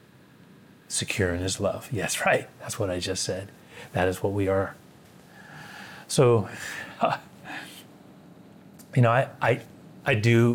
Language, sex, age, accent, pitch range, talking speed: English, male, 30-49, American, 105-125 Hz, 135 wpm